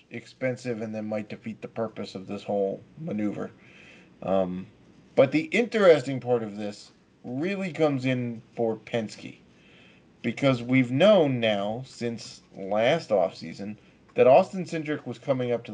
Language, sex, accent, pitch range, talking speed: English, male, American, 110-130 Hz, 140 wpm